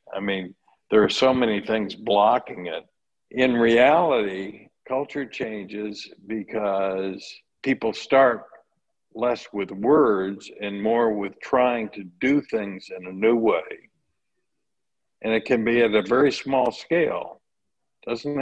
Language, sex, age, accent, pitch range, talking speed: English, male, 60-79, American, 100-125 Hz, 130 wpm